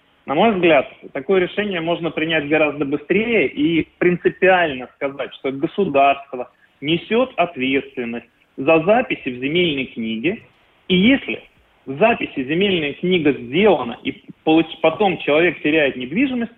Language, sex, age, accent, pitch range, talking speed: Russian, male, 20-39, native, 140-185 Hz, 120 wpm